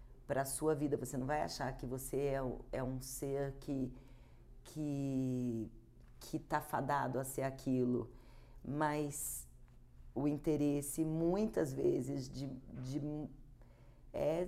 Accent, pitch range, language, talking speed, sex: Brazilian, 130-160 Hz, Portuguese, 125 wpm, female